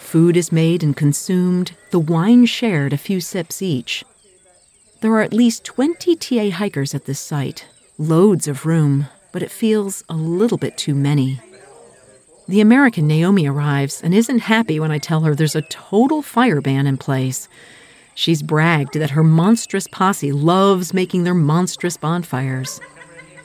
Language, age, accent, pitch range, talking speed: English, 40-59, American, 145-195 Hz, 160 wpm